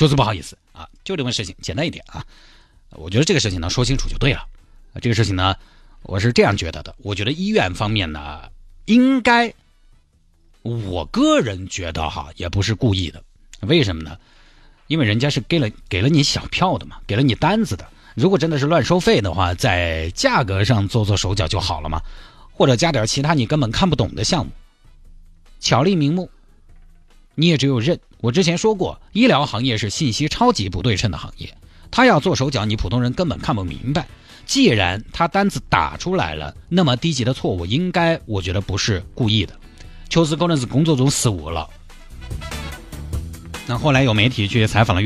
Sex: male